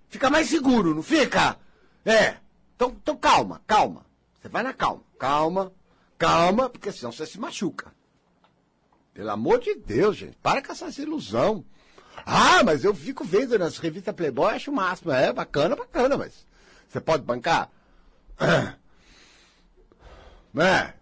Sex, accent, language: male, Brazilian, Portuguese